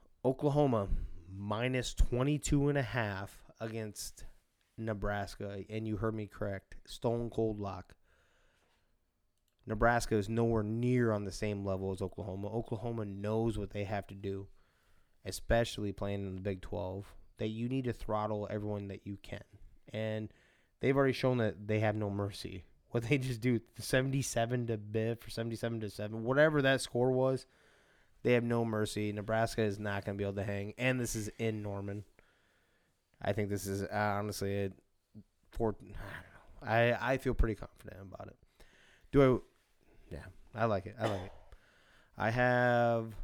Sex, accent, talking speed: male, American, 155 wpm